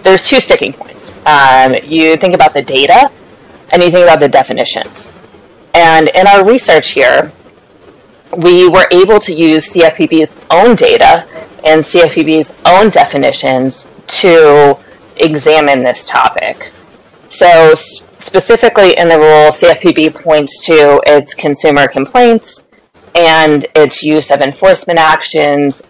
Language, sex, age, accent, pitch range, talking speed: English, female, 30-49, American, 150-210 Hz, 125 wpm